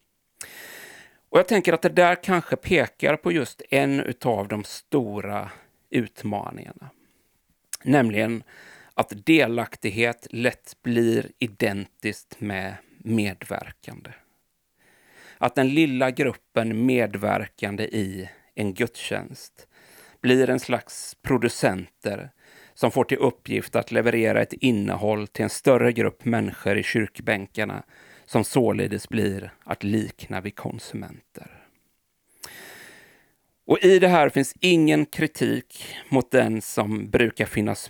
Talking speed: 110 wpm